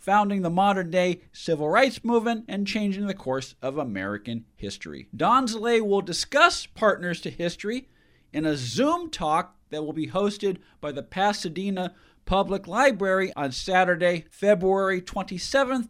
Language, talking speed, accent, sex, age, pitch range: English, 135 wpm, American, male, 50-69, 160-200 Hz